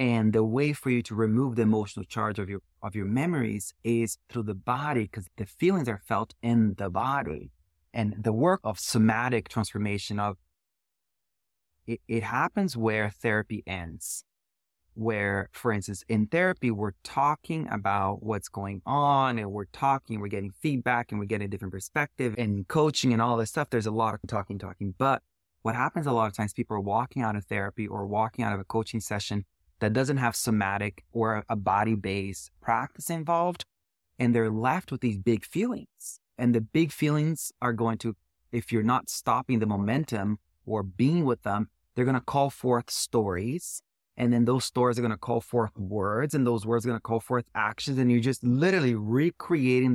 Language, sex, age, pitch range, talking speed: English, male, 30-49, 105-125 Hz, 190 wpm